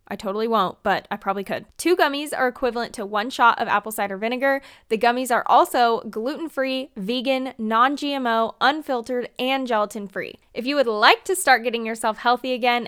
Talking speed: 175 wpm